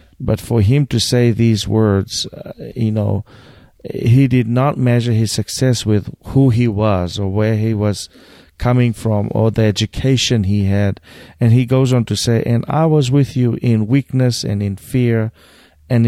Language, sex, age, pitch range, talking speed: English, male, 40-59, 110-130 Hz, 180 wpm